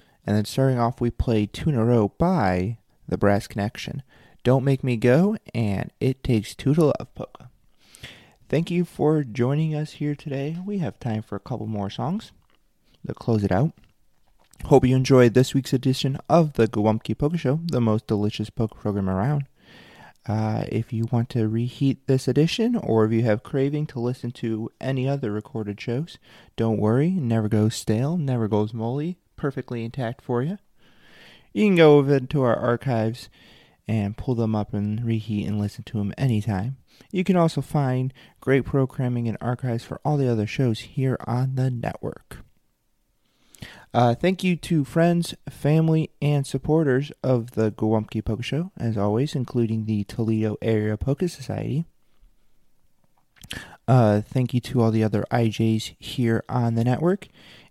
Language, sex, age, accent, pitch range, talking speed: English, male, 30-49, American, 110-140 Hz, 170 wpm